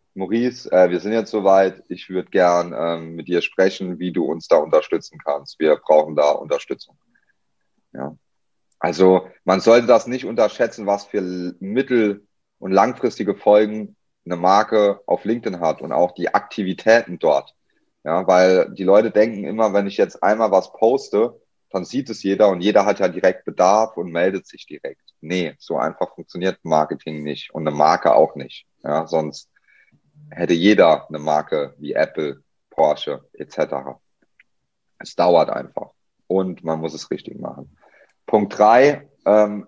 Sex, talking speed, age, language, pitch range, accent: male, 160 wpm, 30-49, German, 90-115 Hz, German